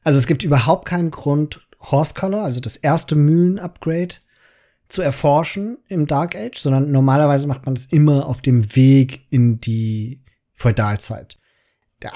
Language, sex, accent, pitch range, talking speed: German, male, German, 130-165 Hz, 150 wpm